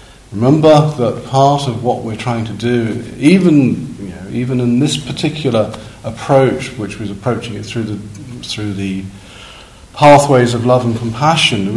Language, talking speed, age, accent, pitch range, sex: English, 155 wpm, 50-69, British, 105-130 Hz, male